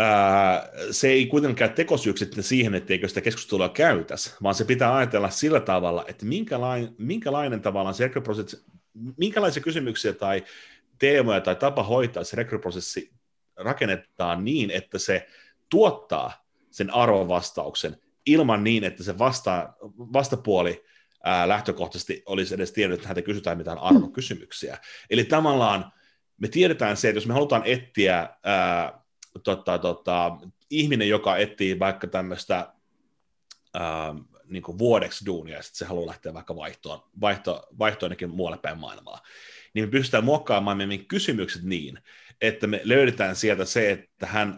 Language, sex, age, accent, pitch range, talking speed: Finnish, male, 30-49, native, 90-115 Hz, 135 wpm